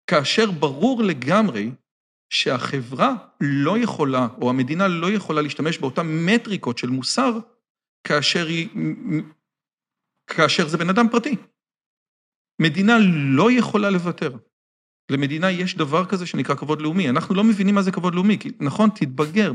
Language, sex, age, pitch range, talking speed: Hebrew, male, 40-59, 135-210 Hz, 130 wpm